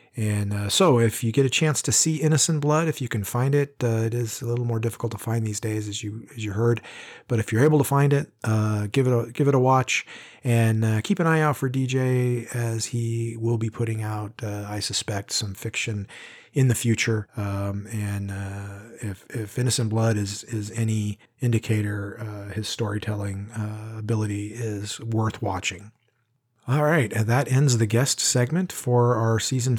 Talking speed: 200 wpm